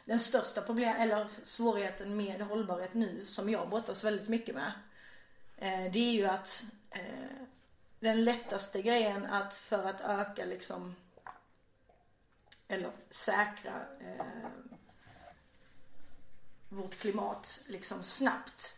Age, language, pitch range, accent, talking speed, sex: 30-49, Swedish, 200-230 Hz, native, 100 wpm, female